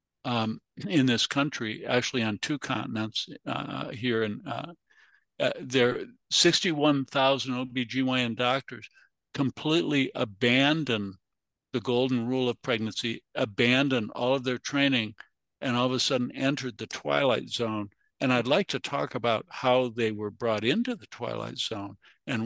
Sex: male